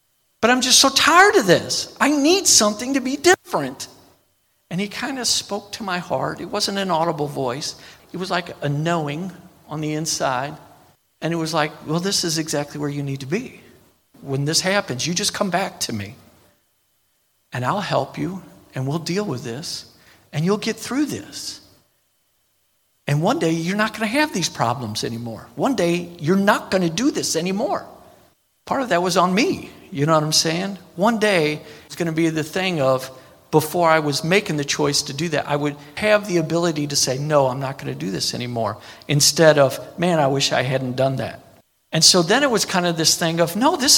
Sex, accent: male, American